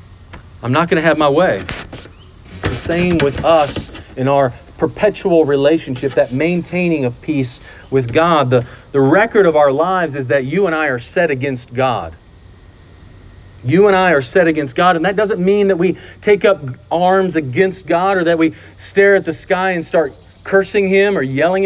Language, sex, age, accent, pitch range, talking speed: English, male, 40-59, American, 120-190 Hz, 190 wpm